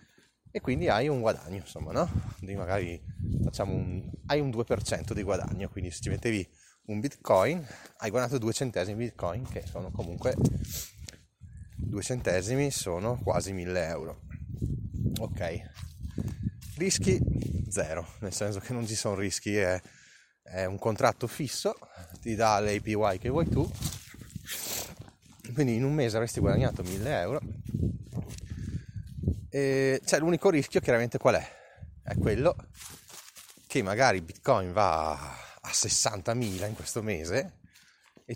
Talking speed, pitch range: 130 wpm, 95-120 Hz